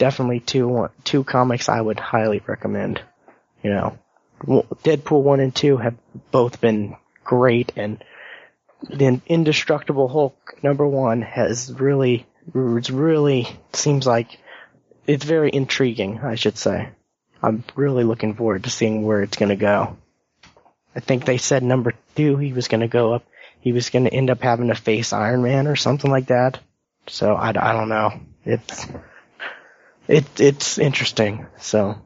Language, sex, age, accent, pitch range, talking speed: English, male, 20-39, American, 110-135 Hz, 155 wpm